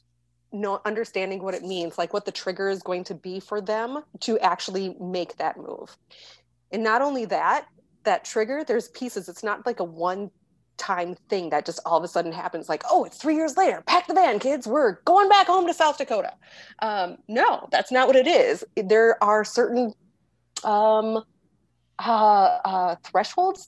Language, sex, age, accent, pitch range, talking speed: English, female, 30-49, American, 180-245 Hz, 185 wpm